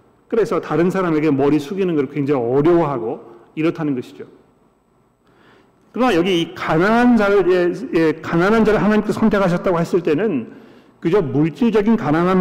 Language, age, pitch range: Korean, 40-59, 140-170 Hz